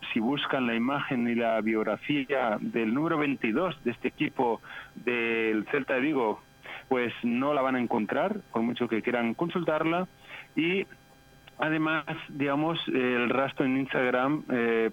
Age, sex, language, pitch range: 40-59, male, Spanish, 120-150 Hz